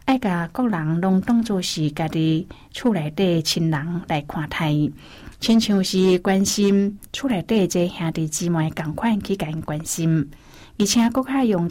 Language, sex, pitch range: Chinese, female, 165-200 Hz